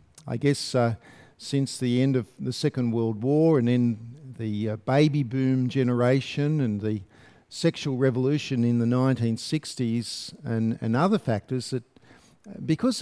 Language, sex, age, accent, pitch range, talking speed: English, male, 50-69, Australian, 120-165 Hz, 145 wpm